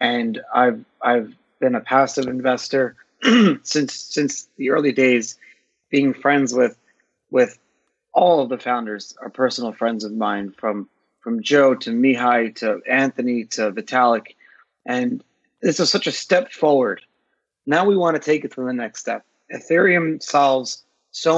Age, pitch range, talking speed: 30-49, 120-150 Hz, 150 wpm